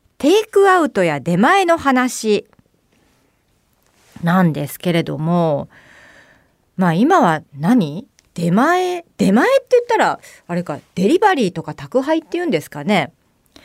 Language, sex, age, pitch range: Japanese, female, 40-59, 170-275 Hz